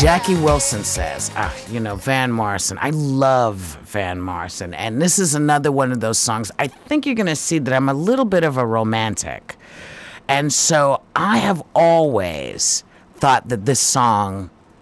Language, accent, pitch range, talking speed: English, American, 115-185 Hz, 175 wpm